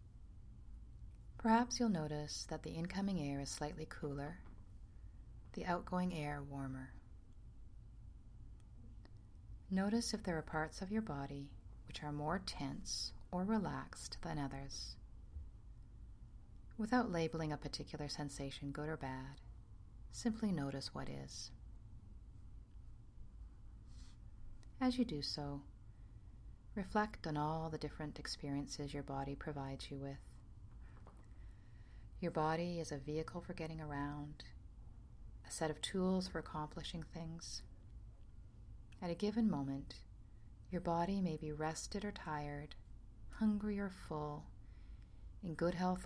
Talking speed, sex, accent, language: 115 wpm, female, American, English